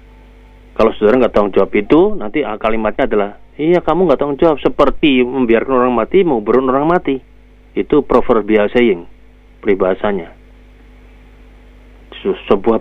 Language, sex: Indonesian, male